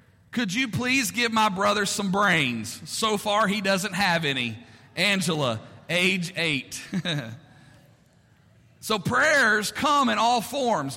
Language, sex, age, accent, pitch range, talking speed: English, male, 40-59, American, 160-220 Hz, 125 wpm